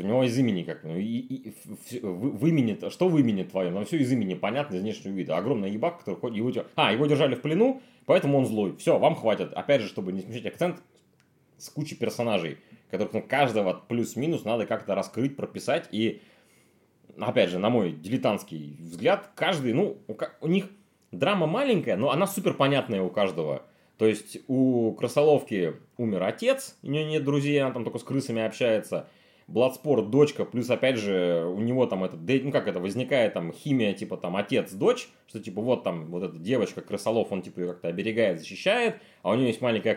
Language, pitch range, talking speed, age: Russian, 105-145 Hz, 190 wpm, 30-49